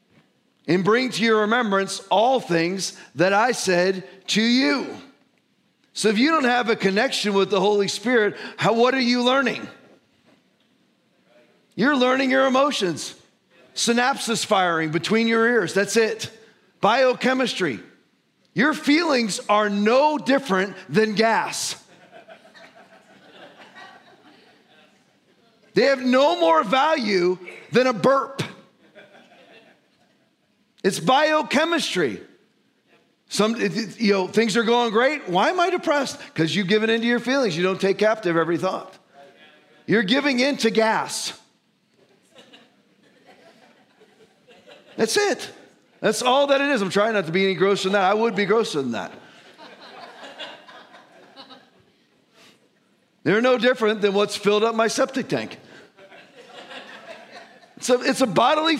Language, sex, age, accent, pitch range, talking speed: English, male, 40-59, American, 200-260 Hz, 125 wpm